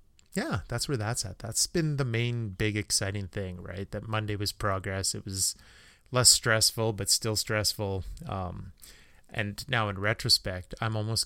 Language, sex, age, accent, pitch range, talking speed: English, male, 30-49, American, 95-110 Hz, 165 wpm